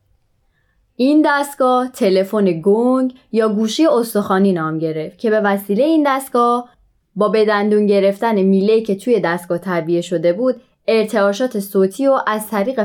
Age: 20-39